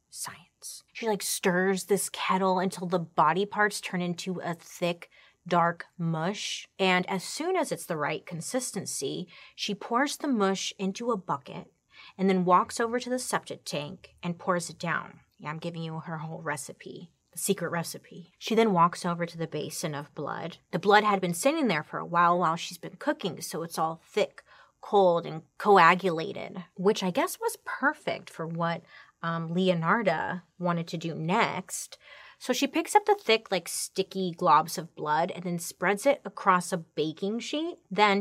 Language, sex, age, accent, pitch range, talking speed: English, female, 30-49, American, 170-200 Hz, 180 wpm